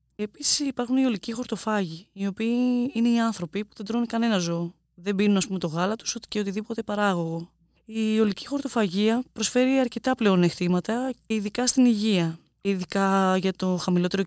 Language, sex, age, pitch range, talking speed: Greek, female, 20-39, 195-240 Hz, 165 wpm